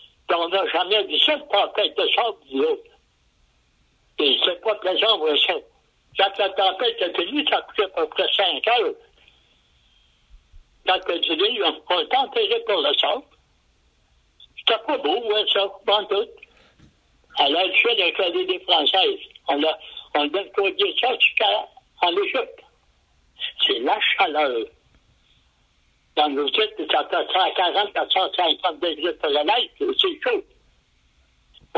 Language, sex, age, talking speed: French, male, 60-79, 150 wpm